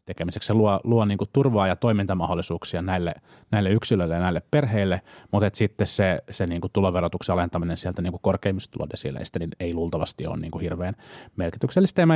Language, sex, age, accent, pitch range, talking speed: Finnish, male, 30-49, native, 95-115 Hz, 160 wpm